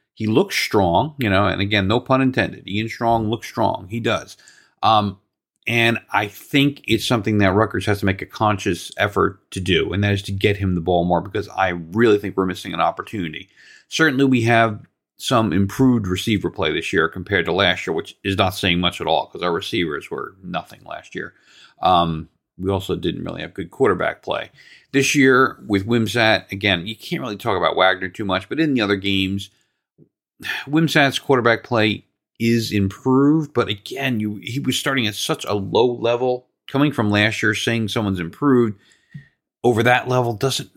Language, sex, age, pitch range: English, male, 40-59, 100-130 Hz